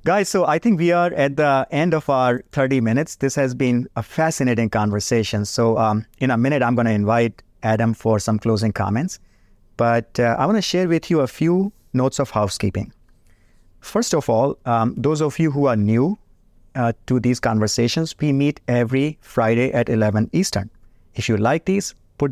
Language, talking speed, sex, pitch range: English, 195 wpm, male, 110-140 Hz